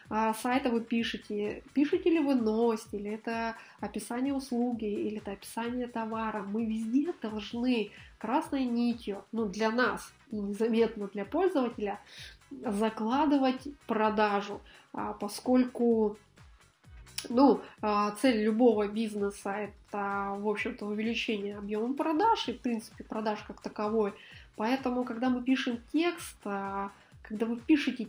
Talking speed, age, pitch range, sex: 115 wpm, 20-39, 210-255 Hz, female